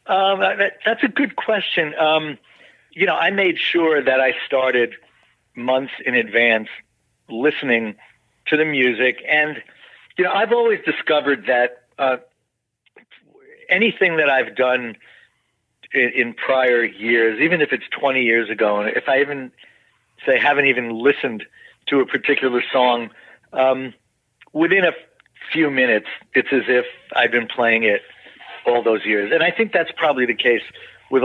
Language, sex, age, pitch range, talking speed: English, male, 50-69, 120-150 Hz, 150 wpm